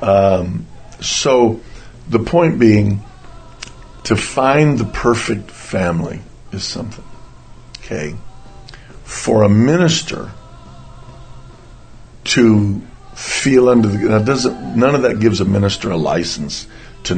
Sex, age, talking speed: male, 60-79, 110 wpm